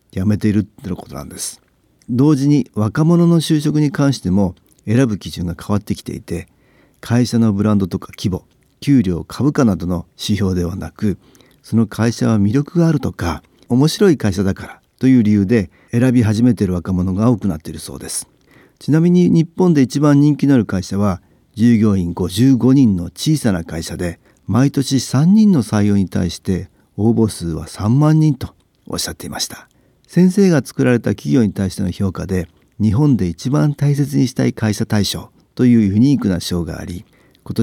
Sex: male